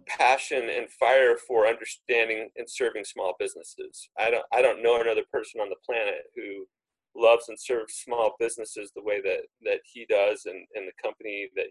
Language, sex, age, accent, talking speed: English, male, 40-59, American, 185 wpm